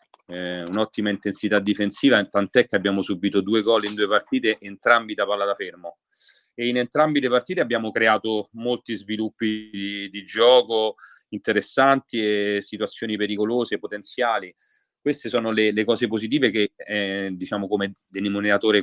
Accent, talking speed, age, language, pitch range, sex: native, 145 wpm, 30-49, Italian, 100-120 Hz, male